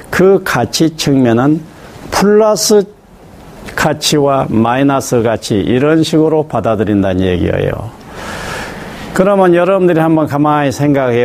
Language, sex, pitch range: Korean, male, 120-180 Hz